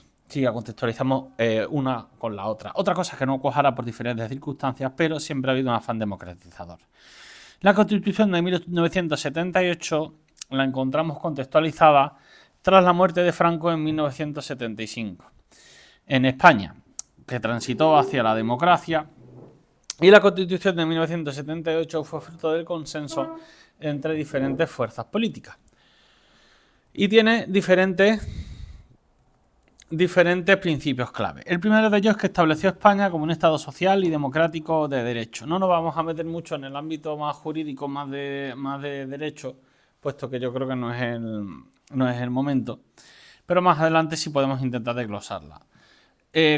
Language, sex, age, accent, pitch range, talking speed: Spanish, male, 30-49, Spanish, 130-170 Hz, 150 wpm